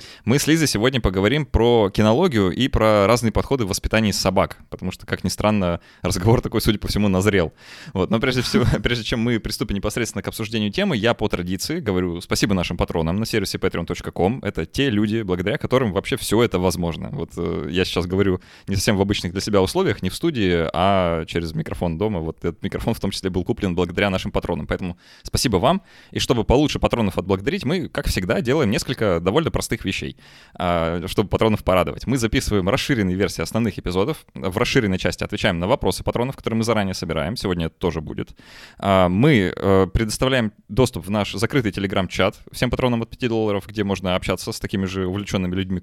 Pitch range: 90-110 Hz